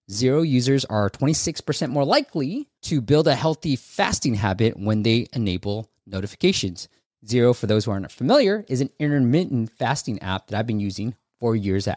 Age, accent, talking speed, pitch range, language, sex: 20-39, American, 170 wpm, 105-145 Hz, English, male